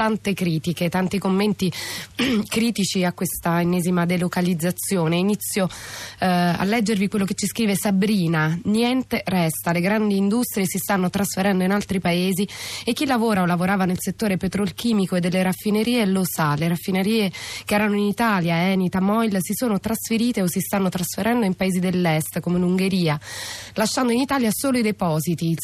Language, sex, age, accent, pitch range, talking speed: Italian, female, 20-39, native, 170-205 Hz, 165 wpm